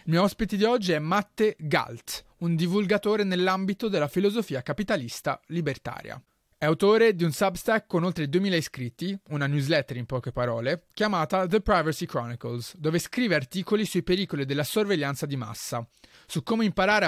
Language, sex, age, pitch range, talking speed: Italian, male, 30-49, 135-200 Hz, 160 wpm